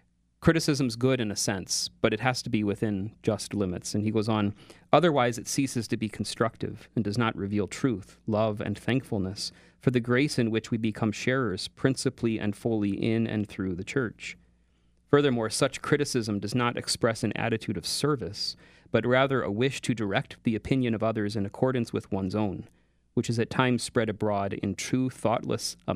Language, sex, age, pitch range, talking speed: English, male, 30-49, 100-125 Hz, 190 wpm